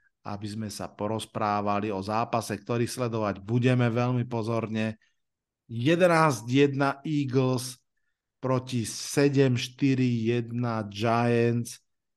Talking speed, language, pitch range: 80 wpm, Slovak, 120-145 Hz